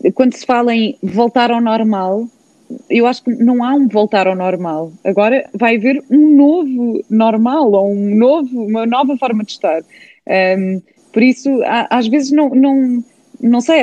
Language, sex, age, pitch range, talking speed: Portuguese, female, 20-39, 220-280 Hz, 150 wpm